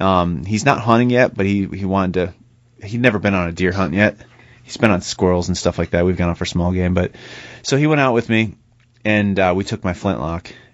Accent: American